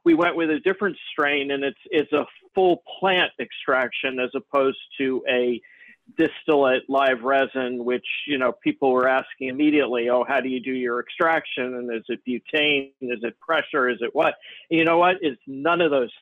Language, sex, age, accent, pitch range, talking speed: English, male, 50-69, American, 120-140 Hz, 195 wpm